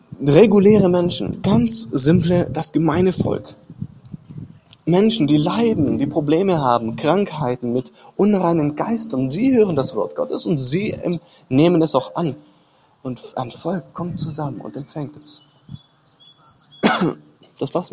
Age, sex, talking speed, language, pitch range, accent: 20-39, male, 125 wpm, English, 145-185 Hz, German